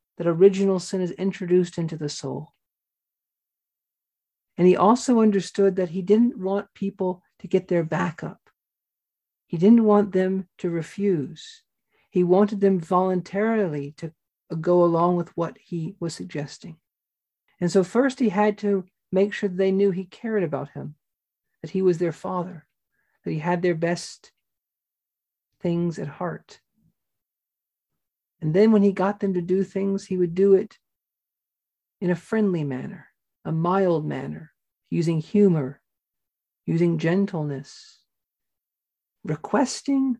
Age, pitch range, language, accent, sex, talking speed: 50-69, 170-200 Hz, English, American, male, 135 wpm